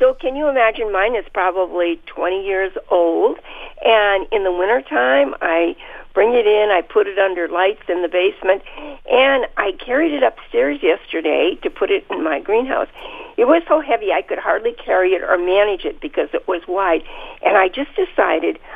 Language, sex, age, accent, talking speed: English, female, 50-69, American, 185 wpm